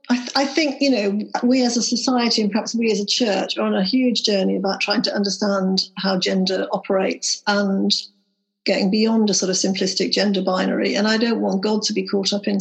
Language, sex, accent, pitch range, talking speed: English, female, British, 205-280 Hz, 220 wpm